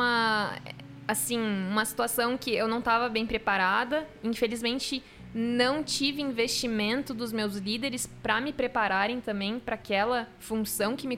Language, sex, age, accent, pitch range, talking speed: Portuguese, female, 10-29, Brazilian, 215-265 Hz, 135 wpm